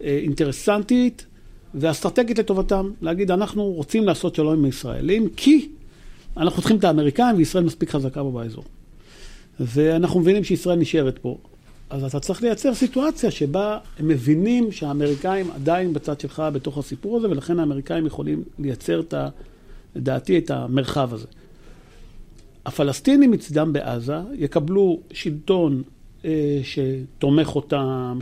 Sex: male